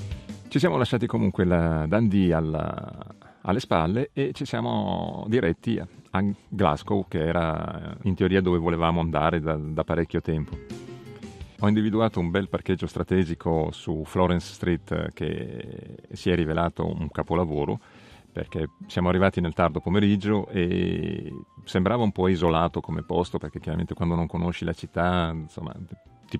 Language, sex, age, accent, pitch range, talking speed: Italian, male, 40-59, native, 85-100 Hz, 145 wpm